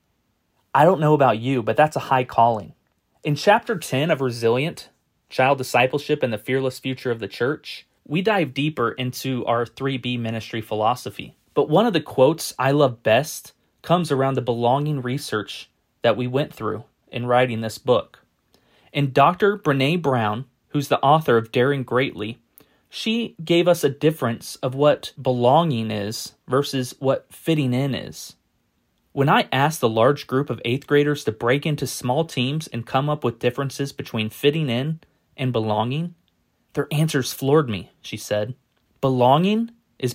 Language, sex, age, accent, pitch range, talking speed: English, male, 30-49, American, 120-150 Hz, 165 wpm